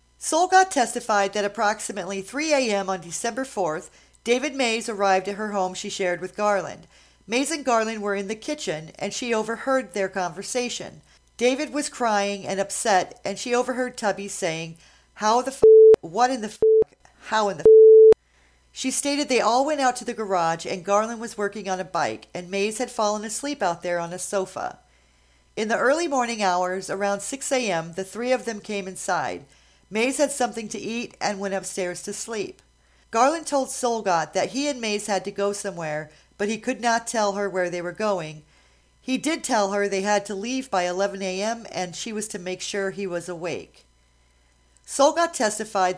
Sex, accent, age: female, American, 40-59